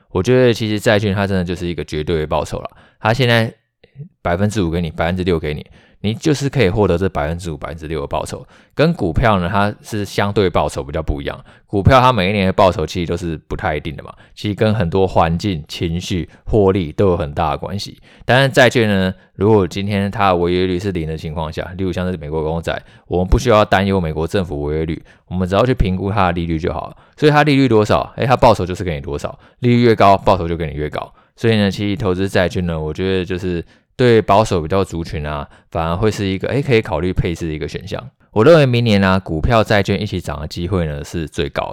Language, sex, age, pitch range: Chinese, male, 20-39, 85-105 Hz